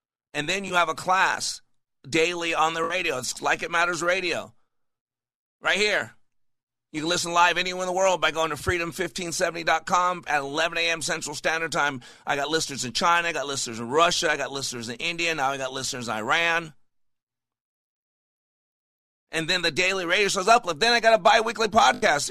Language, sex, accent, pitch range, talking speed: English, male, American, 155-195 Hz, 190 wpm